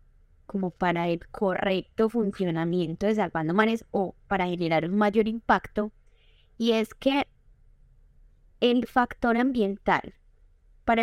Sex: female